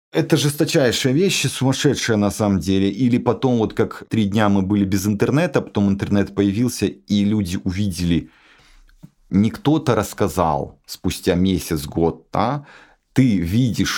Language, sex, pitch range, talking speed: Ukrainian, male, 85-105 Hz, 135 wpm